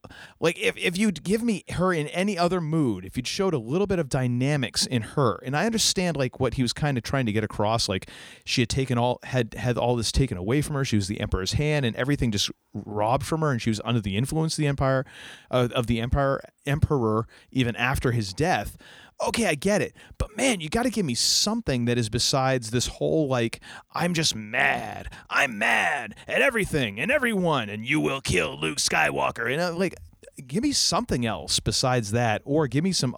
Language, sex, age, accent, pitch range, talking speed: English, male, 30-49, American, 120-165 Hz, 220 wpm